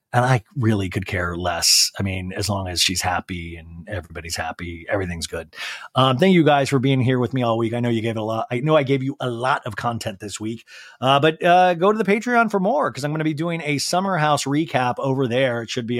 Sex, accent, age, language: male, American, 30-49, English